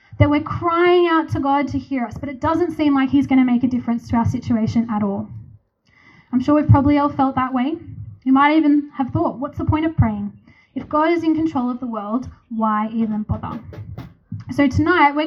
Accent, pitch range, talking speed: Australian, 230-295 Hz, 220 wpm